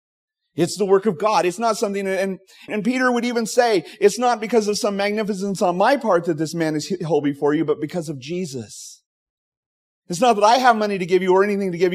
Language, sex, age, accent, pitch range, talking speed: English, male, 30-49, American, 120-175 Hz, 240 wpm